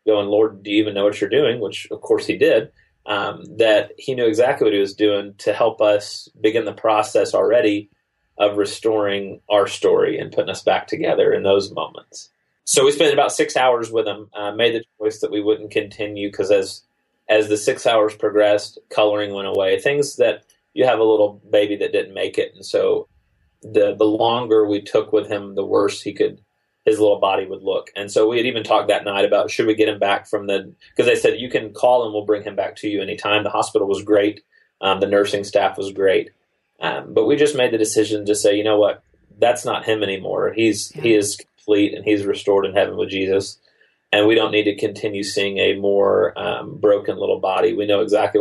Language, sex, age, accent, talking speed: English, male, 30-49, American, 220 wpm